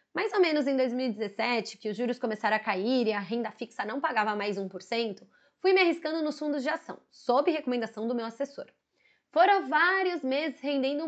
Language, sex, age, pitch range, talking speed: Portuguese, female, 20-39, 225-285 Hz, 190 wpm